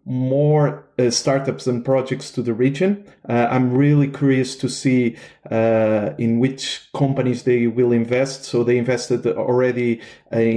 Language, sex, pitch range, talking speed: English, male, 125-145 Hz, 150 wpm